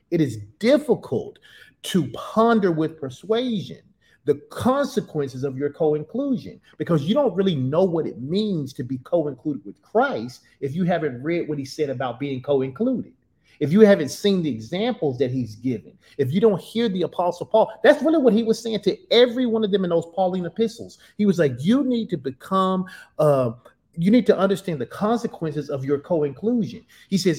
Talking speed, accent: 185 wpm, American